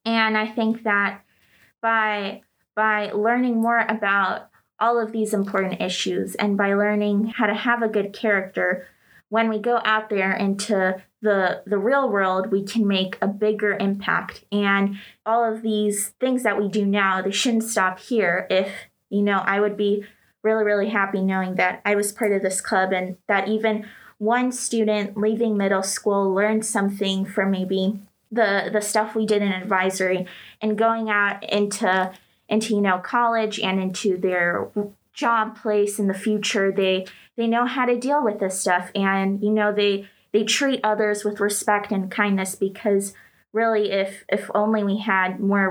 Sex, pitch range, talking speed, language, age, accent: female, 195-220 Hz, 175 wpm, English, 20-39, American